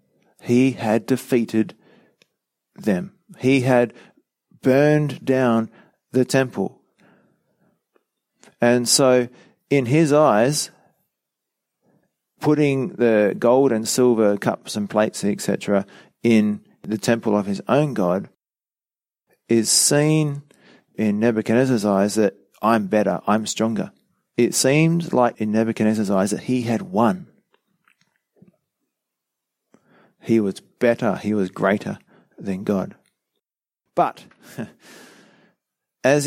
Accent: Australian